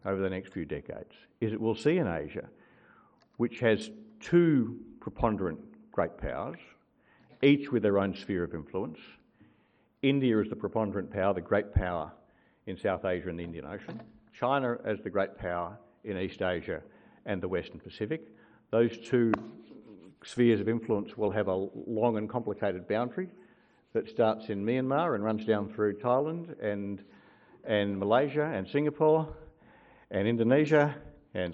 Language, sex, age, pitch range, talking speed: English, male, 50-69, 100-125 Hz, 150 wpm